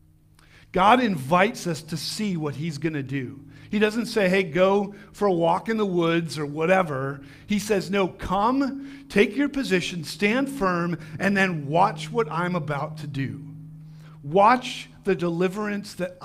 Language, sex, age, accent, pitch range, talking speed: English, male, 50-69, American, 155-195 Hz, 165 wpm